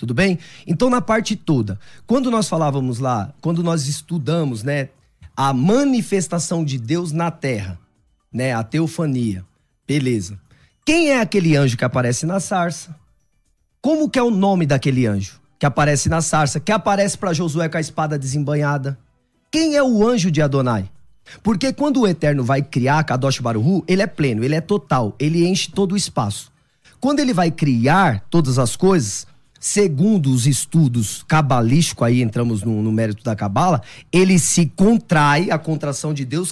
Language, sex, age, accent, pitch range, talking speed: Portuguese, male, 20-39, Brazilian, 140-210 Hz, 165 wpm